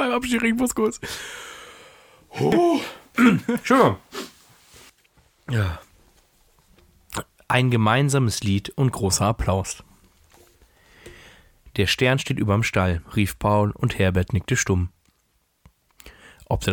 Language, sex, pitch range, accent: German, male, 95-115 Hz, German